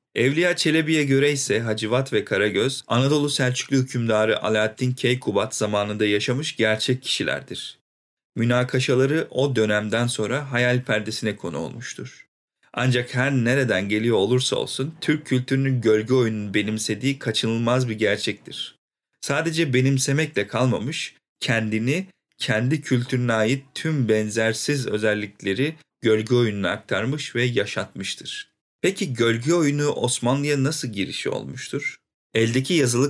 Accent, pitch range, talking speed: native, 110-135 Hz, 110 wpm